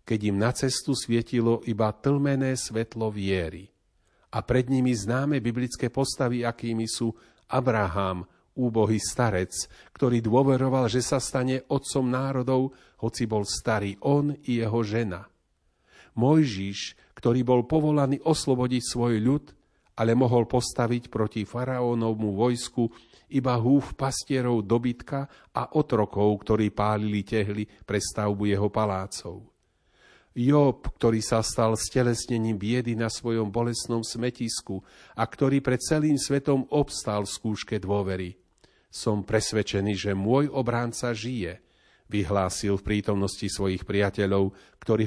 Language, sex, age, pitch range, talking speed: Slovak, male, 40-59, 105-125 Hz, 120 wpm